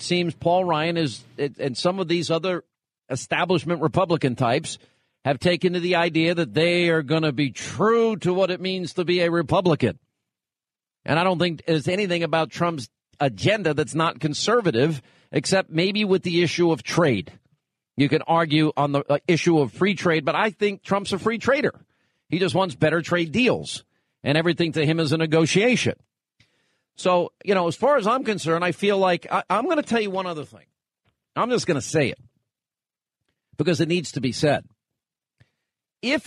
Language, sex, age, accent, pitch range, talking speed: English, male, 50-69, American, 150-180 Hz, 185 wpm